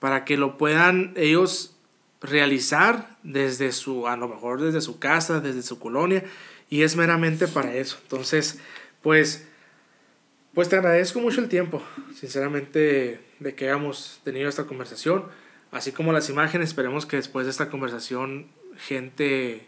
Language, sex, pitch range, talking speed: Spanish, male, 135-170 Hz, 145 wpm